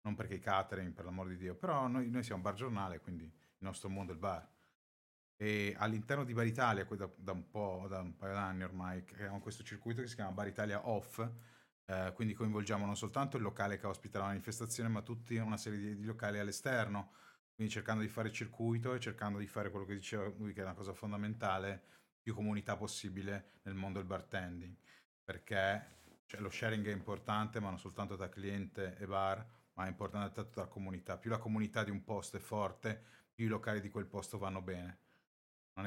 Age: 30-49